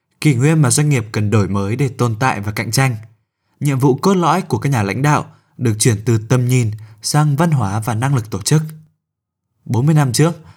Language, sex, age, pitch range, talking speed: Vietnamese, male, 20-39, 110-145 Hz, 220 wpm